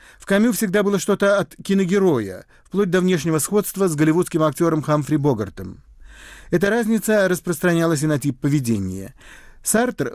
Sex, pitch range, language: male, 140-190 Hz, Russian